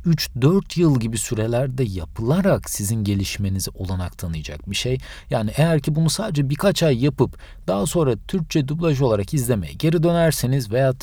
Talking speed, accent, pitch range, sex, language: 150 wpm, native, 105-155 Hz, male, Turkish